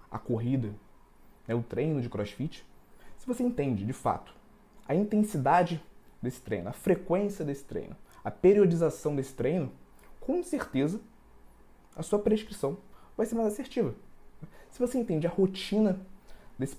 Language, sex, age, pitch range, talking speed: Portuguese, male, 20-39, 145-200 Hz, 140 wpm